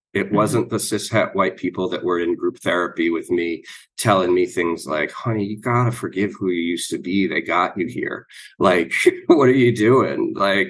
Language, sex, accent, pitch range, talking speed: English, male, American, 100-135 Hz, 200 wpm